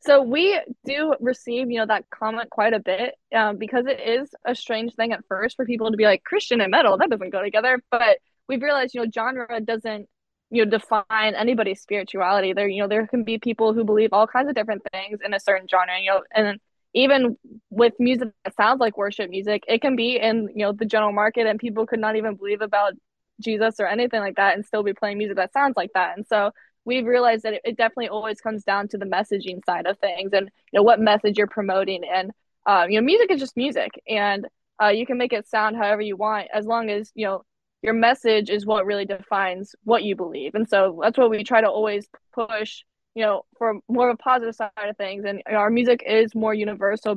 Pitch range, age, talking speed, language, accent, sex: 205-235 Hz, 10-29, 235 wpm, English, American, female